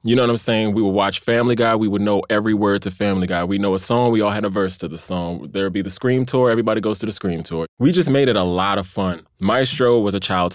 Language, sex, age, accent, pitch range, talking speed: English, male, 20-39, American, 95-120 Hz, 300 wpm